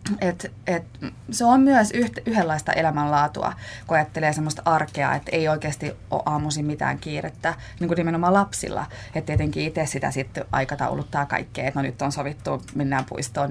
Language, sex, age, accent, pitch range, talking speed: Finnish, female, 20-39, native, 145-185 Hz, 165 wpm